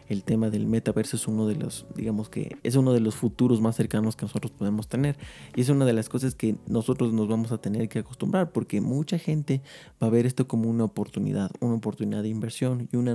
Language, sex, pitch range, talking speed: Spanish, male, 105-120 Hz, 235 wpm